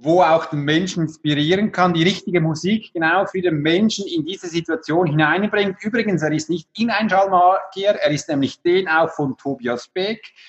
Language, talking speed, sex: German, 175 wpm, male